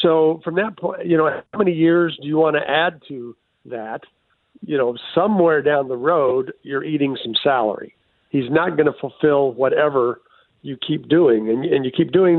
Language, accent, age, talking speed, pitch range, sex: English, American, 50-69, 195 wpm, 130-165 Hz, male